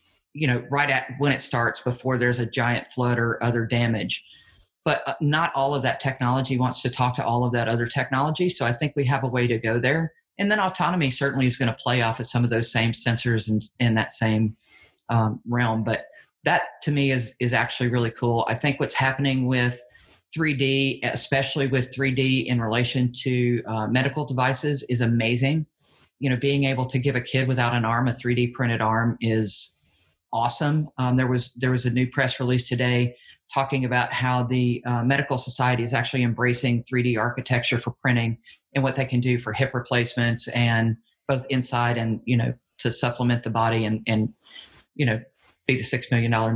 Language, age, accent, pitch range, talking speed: English, 40-59, American, 120-135 Hz, 200 wpm